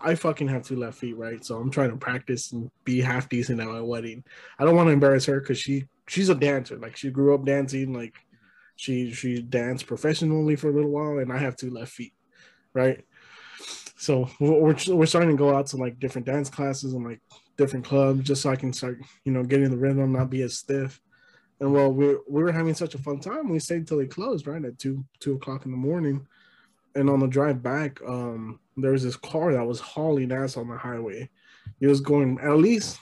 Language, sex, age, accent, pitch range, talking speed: English, male, 20-39, American, 130-150 Hz, 235 wpm